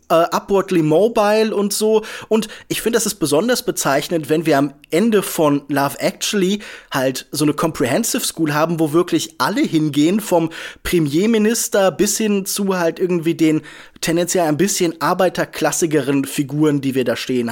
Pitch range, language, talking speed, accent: 155-210 Hz, German, 155 wpm, German